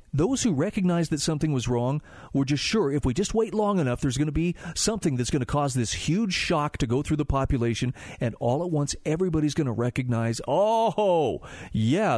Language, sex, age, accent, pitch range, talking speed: English, male, 40-59, American, 120-165 Hz, 210 wpm